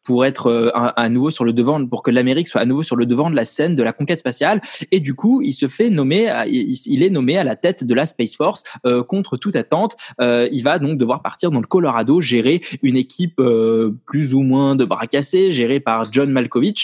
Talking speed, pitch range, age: 240 wpm, 120-155 Hz, 20-39